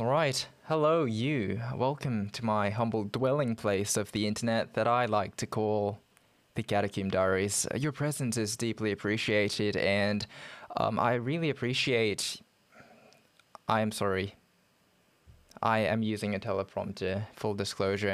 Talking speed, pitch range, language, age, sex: 130 wpm, 105-125 Hz, English, 20-39, male